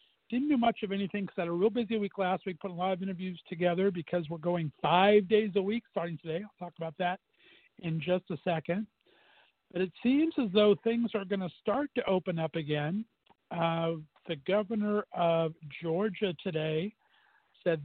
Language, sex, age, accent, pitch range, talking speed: English, male, 50-69, American, 165-210 Hz, 195 wpm